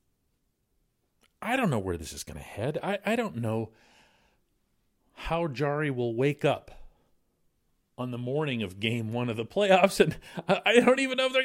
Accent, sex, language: American, male, English